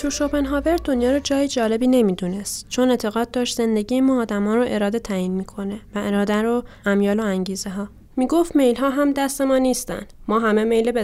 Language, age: Persian, 10-29